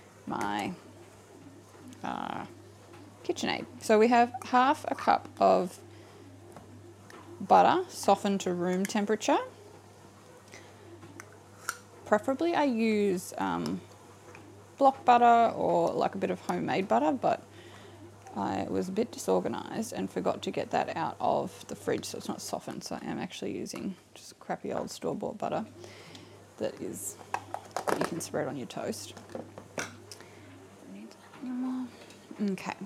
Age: 20-39